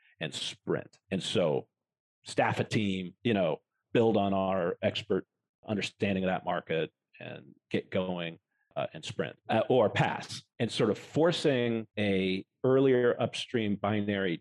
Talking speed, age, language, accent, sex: 140 wpm, 40-59, English, American, male